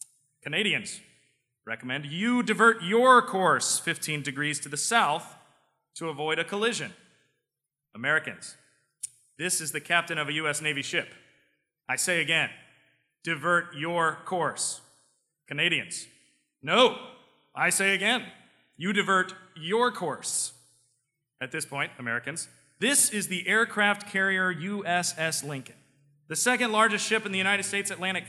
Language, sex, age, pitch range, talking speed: English, male, 30-49, 155-220 Hz, 125 wpm